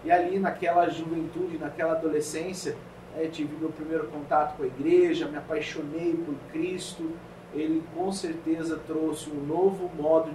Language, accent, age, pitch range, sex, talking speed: Portuguese, Brazilian, 40-59, 150-175 Hz, male, 145 wpm